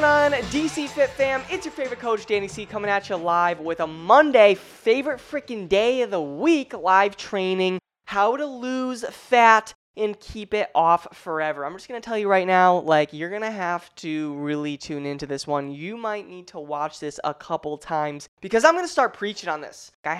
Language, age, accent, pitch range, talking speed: English, 10-29, American, 155-215 Hz, 200 wpm